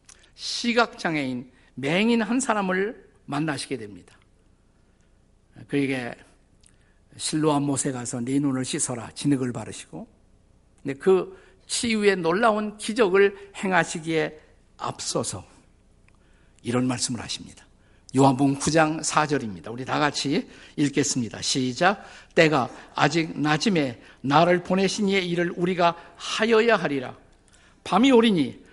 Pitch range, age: 125-195 Hz, 50-69